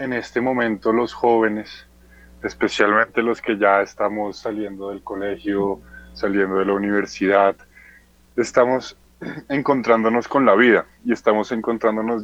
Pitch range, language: 105-130 Hz, Spanish